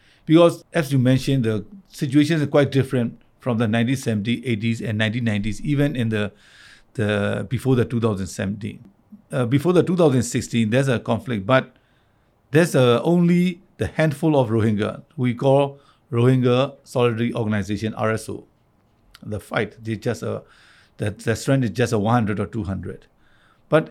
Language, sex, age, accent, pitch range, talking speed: English, male, 60-79, Indian, 115-150 Hz, 145 wpm